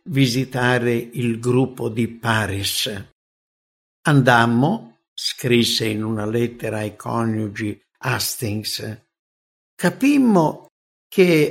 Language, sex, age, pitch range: English, male, 60-79, 115-155 Hz